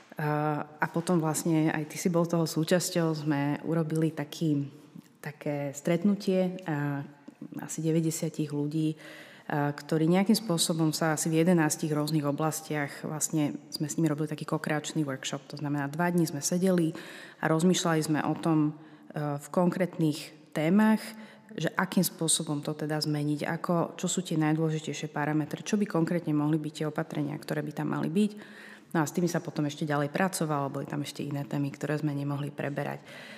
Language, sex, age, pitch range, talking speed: Slovak, female, 30-49, 150-170 Hz, 170 wpm